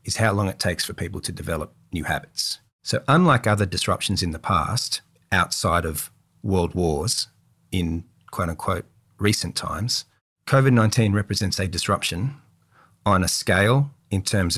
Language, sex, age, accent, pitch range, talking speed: English, male, 40-59, Australian, 90-110 Hz, 145 wpm